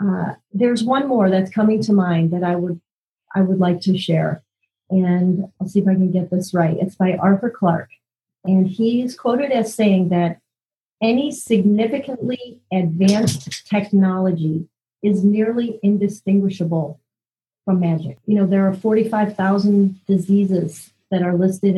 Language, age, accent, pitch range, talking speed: English, 40-59, American, 175-210 Hz, 145 wpm